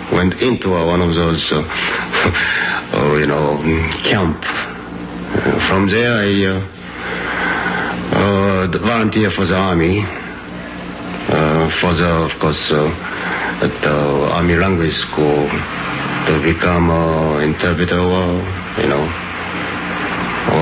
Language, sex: English, male